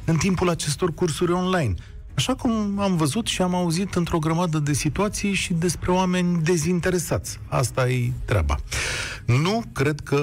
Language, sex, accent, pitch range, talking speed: Romanian, male, native, 110-155 Hz, 155 wpm